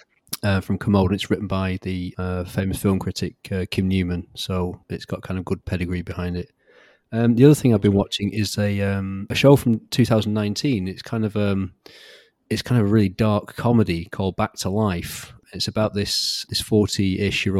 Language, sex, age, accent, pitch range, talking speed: English, male, 30-49, British, 95-110 Hz, 205 wpm